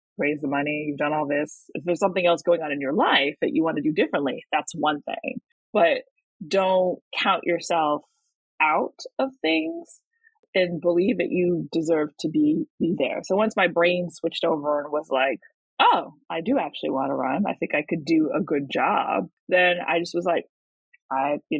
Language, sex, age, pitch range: English, female, 20-39, 150-220 Hz